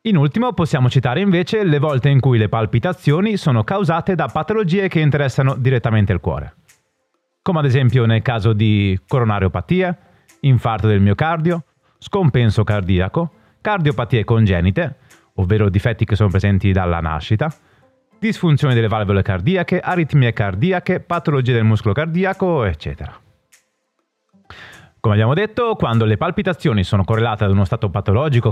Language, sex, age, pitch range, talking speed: Italian, male, 30-49, 105-170 Hz, 135 wpm